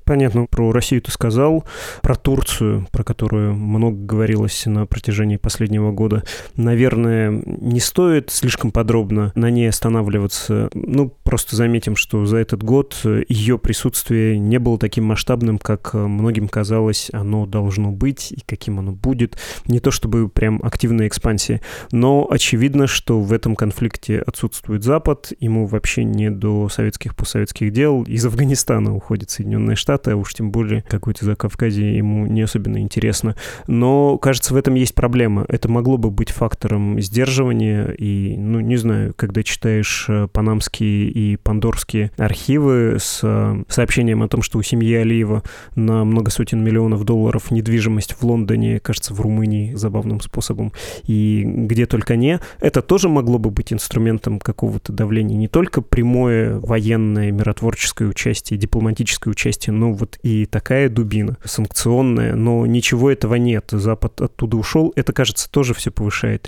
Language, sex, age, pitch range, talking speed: Russian, male, 20-39, 105-120 Hz, 145 wpm